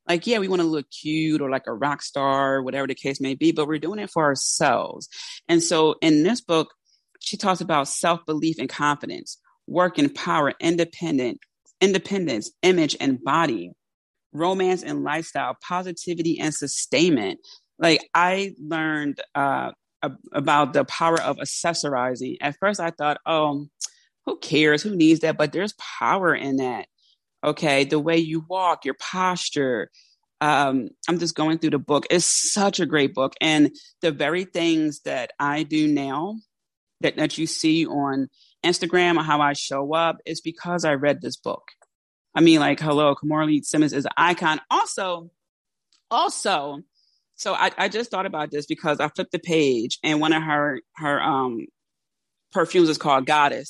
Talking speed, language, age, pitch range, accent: 165 wpm, English, 30-49, 150-180 Hz, American